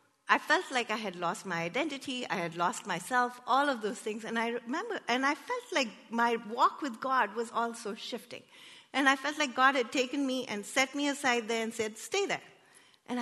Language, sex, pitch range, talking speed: English, female, 215-290 Hz, 220 wpm